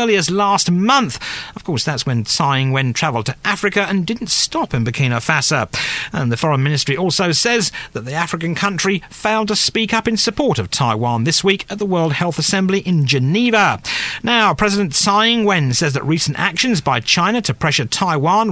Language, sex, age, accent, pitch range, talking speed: English, male, 40-59, British, 145-220 Hz, 190 wpm